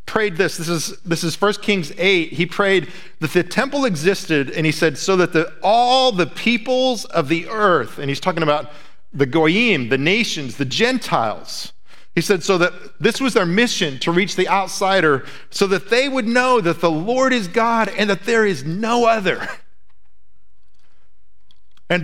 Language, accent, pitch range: English, American, 160-220 Hz